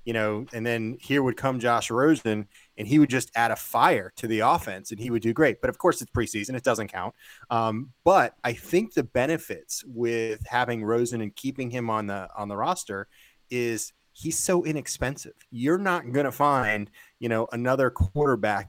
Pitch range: 115-140 Hz